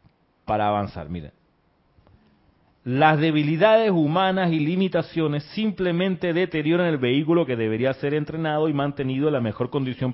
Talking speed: 130 wpm